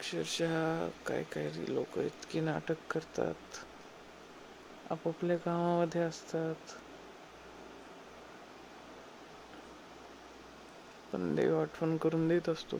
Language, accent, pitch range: Marathi, native, 160-175 Hz